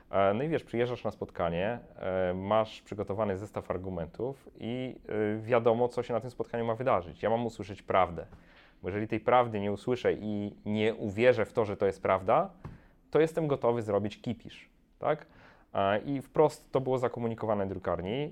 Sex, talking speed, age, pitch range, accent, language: male, 165 wpm, 30-49, 105-135 Hz, native, Polish